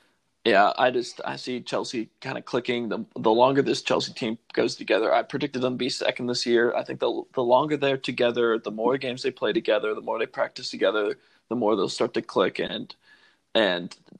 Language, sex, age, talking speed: English, male, 20-39, 215 wpm